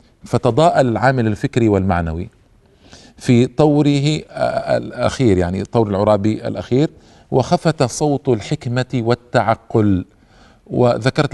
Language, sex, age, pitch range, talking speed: Arabic, male, 50-69, 110-145 Hz, 85 wpm